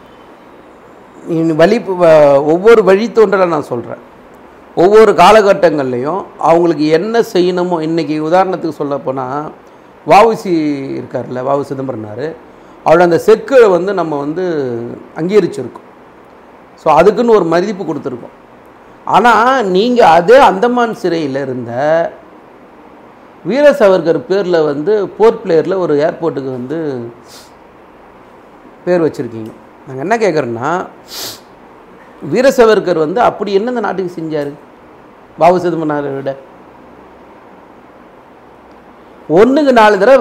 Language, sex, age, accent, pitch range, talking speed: Tamil, male, 50-69, native, 155-215 Hz, 90 wpm